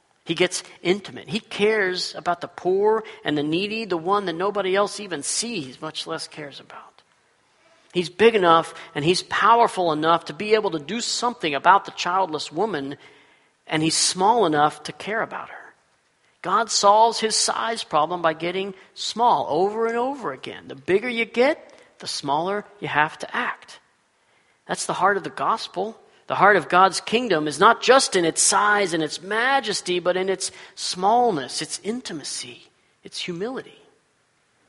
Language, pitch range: English, 165-220 Hz